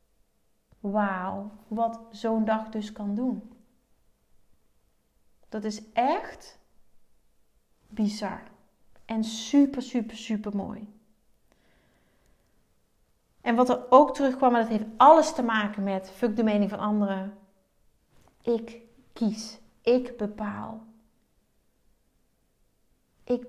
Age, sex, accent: 30-49, female, Dutch